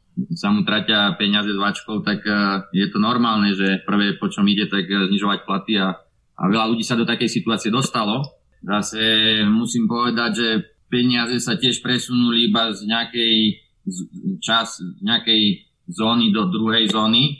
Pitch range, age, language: 100-115 Hz, 20-39, Slovak